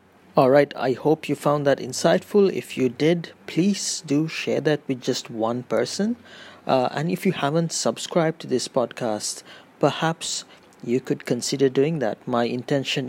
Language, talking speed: English, 160 wpm